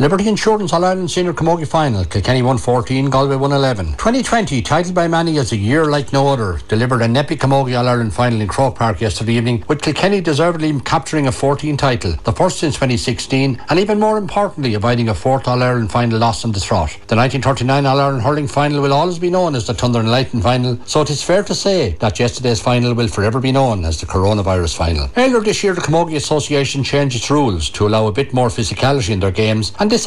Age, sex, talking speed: 60-79, male, 220 wpm